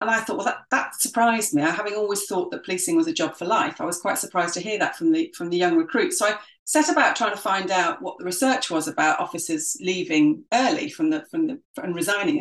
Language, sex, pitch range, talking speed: English, female, 190-305 Hz, 260 wpm